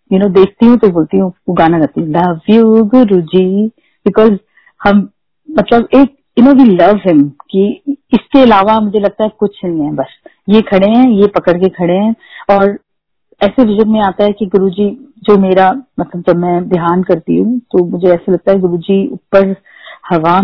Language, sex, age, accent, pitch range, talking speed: Hindi, female, 40-59, native, 185-220 Hz, 190 wpm